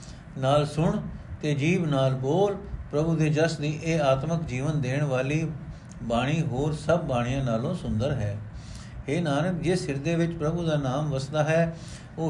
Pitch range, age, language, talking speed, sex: 140-175 Hz, 60-79, Punjabi, 165 wpm, male